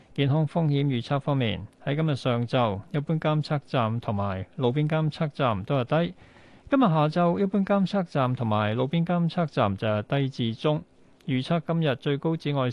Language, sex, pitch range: Chinese, male, 120-165 Hz